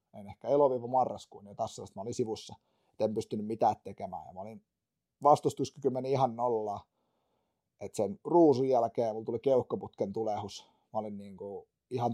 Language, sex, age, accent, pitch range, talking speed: Finnish, male, 30-49, native, 110-140 Hz, 155 wpm